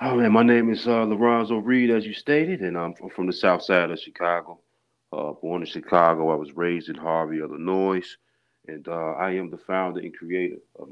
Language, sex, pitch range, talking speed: English, male, 85-105 Hz, 210 wpm